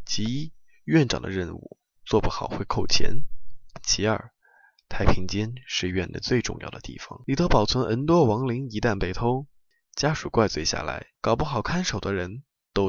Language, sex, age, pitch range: Chinese, male, 20-39, 95-135 Hz